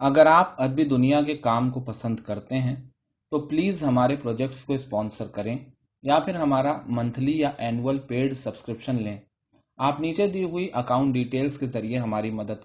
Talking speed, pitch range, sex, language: 170 wpm, 115-145 Hz, male, Urdu